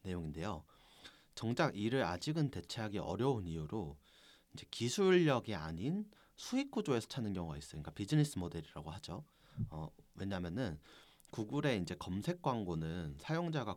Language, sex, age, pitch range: Korean, male, 30-49, 90-145 Hz